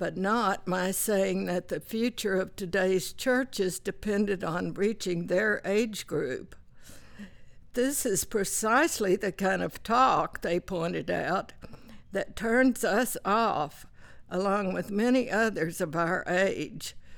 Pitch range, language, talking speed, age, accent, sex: 190-230 Hz, English, 130 wpm, 60-79, American, female